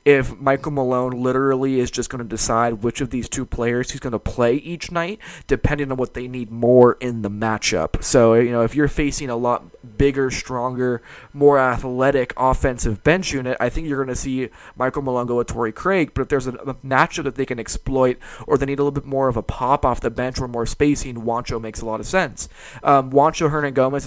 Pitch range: 120-140 Hz